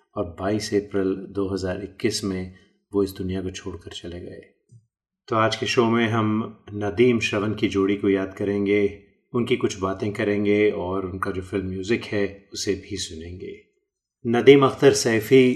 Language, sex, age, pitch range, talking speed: Hindi, male, 30-49, 100-115 Hz, 160 wpm